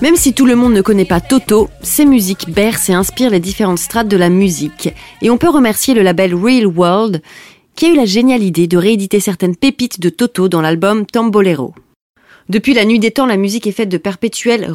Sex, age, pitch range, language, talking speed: female, 30-49, 185-245 Hz, French, 220 wpm